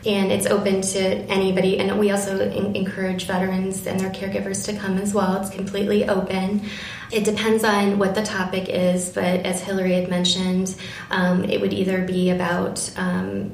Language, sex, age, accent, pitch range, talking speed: English, female, 20-39, American, 180-195 Hz, 175 wpm